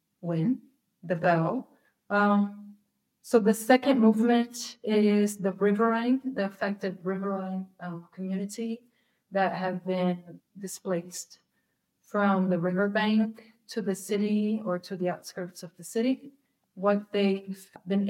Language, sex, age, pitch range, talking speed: English, female, 30-49, 185-215 Hz, 115 wpm